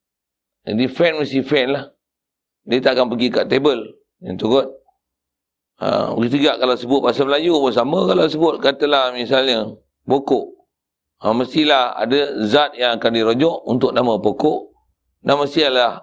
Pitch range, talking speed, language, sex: 115-145 Hz, 145 wpm, Malay, male